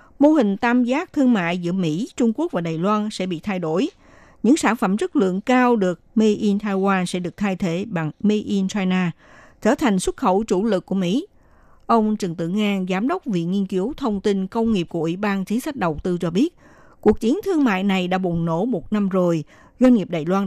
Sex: female